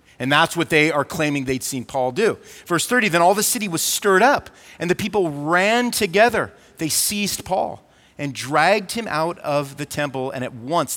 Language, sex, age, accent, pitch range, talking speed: English, male, 40-59, American, 130-200 Hz, 200 wpm